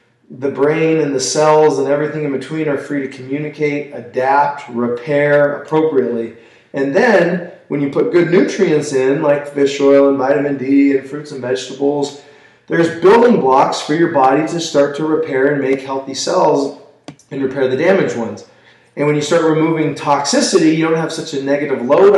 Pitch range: 130-150 Hz